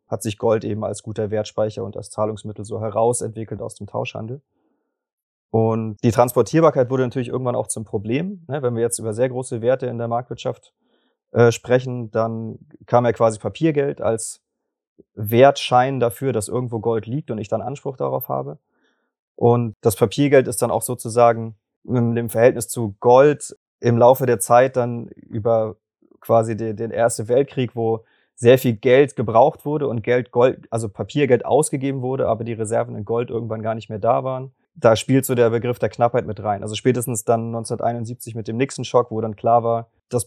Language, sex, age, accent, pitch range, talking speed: German, male, 30-49, German, 110-125 Hz, 175 wpm